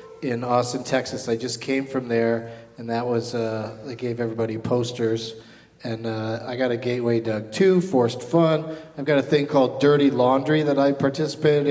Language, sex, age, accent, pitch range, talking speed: English, male, 40-59, American, 125-150 Hz, 185 wpm